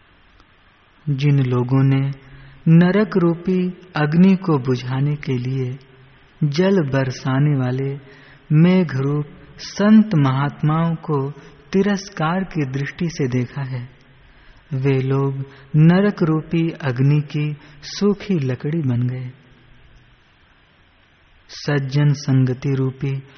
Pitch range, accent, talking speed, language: 130-150 Hz, native, 90 wpm, Hindi